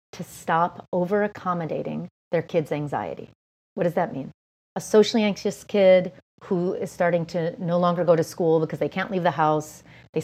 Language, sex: English, female